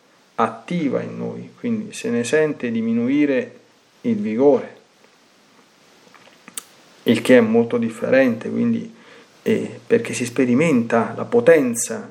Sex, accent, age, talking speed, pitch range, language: male, native, 40-59, 110 wpm, 160-235 Hz, Italian